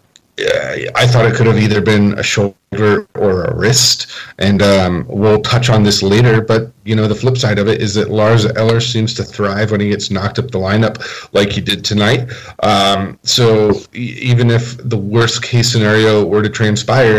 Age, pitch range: 40-59, 105-120 Hz